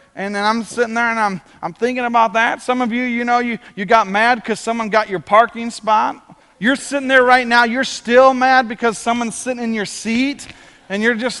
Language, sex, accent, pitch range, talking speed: English, male, American, 200-250 Hz, 225 wpm